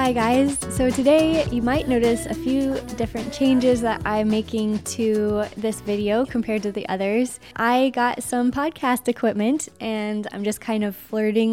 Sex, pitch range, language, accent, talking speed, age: female, 200-240 Hz, English, American, 165 wpm, 10-29